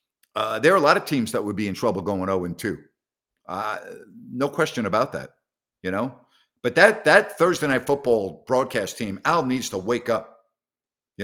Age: 50-69